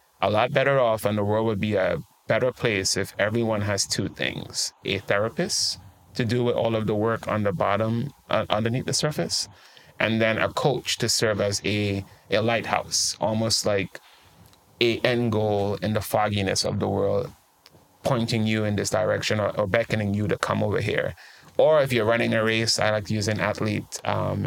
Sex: male